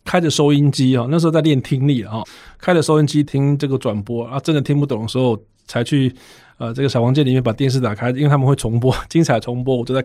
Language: Chinese